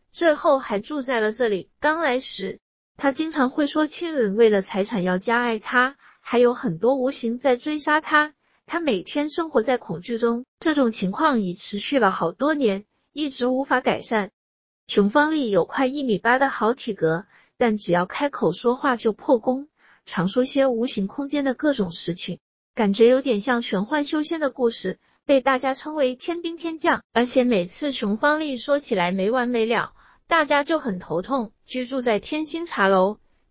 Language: Chinese